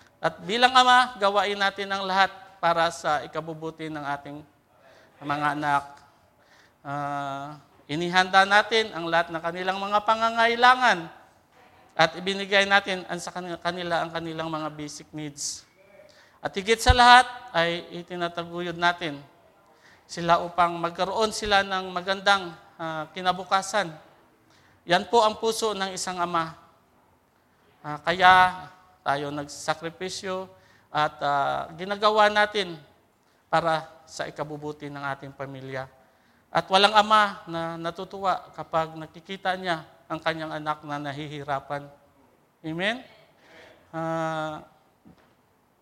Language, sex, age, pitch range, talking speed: Filipino, male, 50-69, 155-195 Hz, 115 wpm